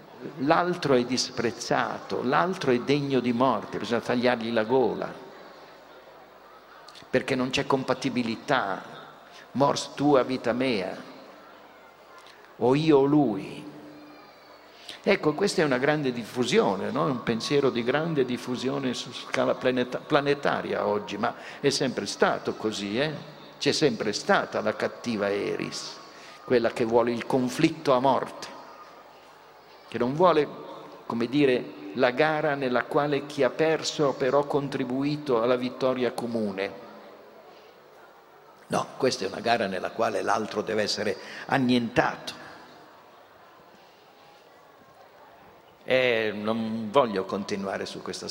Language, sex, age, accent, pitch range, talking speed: Italian, male, 50-69, native, 115-145 Hz, 120 wpm